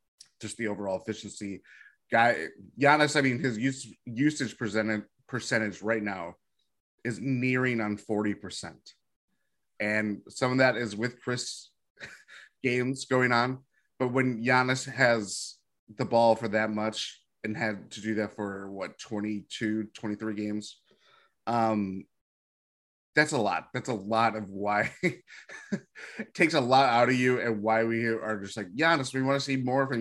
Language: English